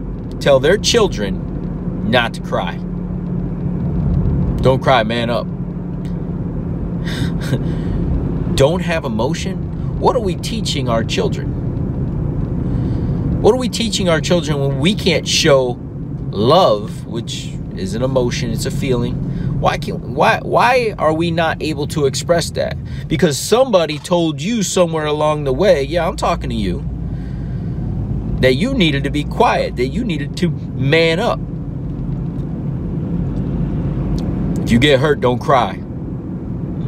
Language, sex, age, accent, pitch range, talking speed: English, male, 40-59, American, 140-170 Hz, 130 wpm